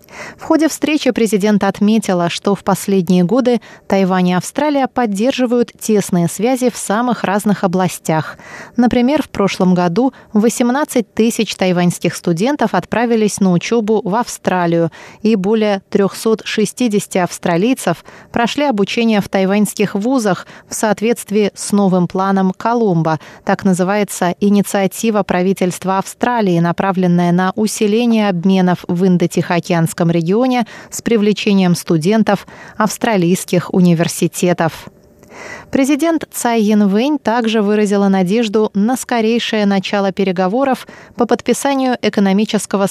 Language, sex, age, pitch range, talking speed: Russian, female, 20-39, 185-230 Hz, 110 wpm